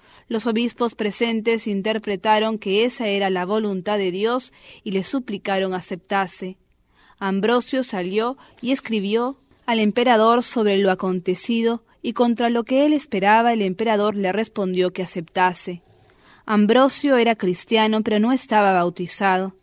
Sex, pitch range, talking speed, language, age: female, 190-235 Hz, 130 wpm, English, 20-39